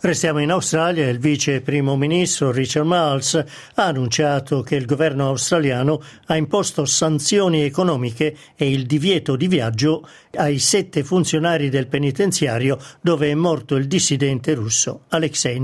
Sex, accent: male, native